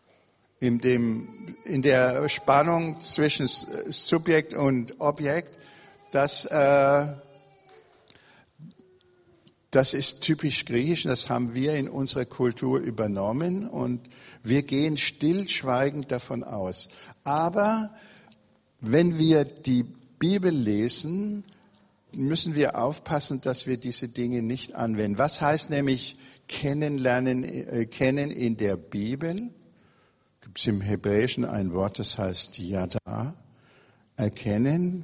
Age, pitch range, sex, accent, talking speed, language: 60-79, 115-150 Hz, male, German, 100 wpm, German